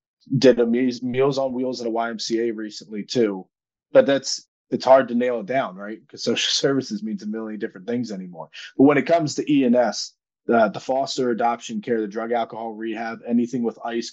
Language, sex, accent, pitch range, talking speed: English, male, American, 110-120 Hz, 195 wpm